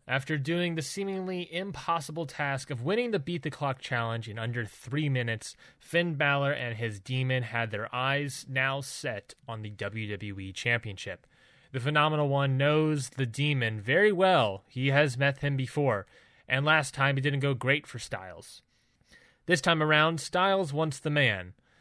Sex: male